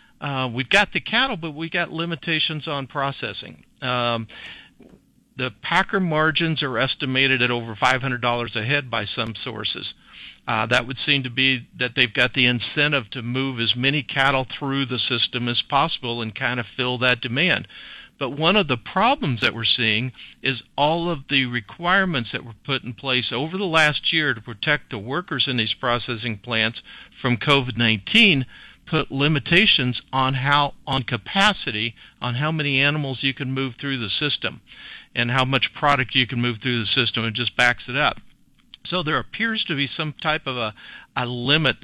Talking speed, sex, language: 185 wpm, male, English